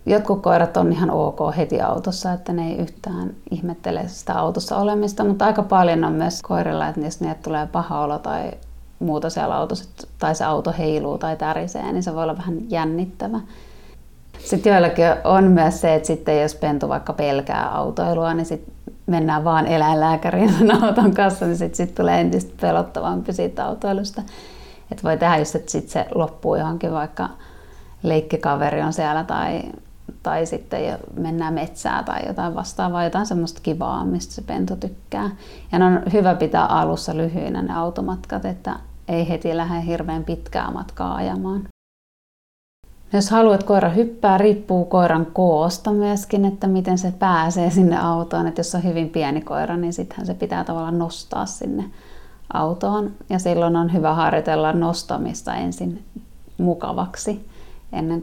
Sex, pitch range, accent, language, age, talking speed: female, 155-185 Hz, native, Finnish, 30-49, 160 wpm